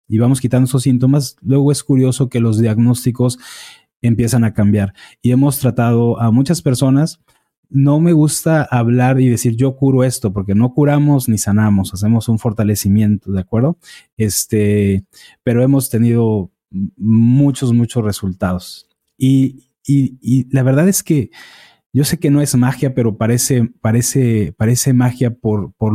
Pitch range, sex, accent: 110-135 Hz, male, Mexican